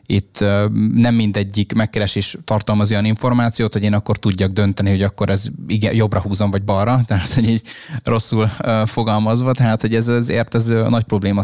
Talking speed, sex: 155 wpm, male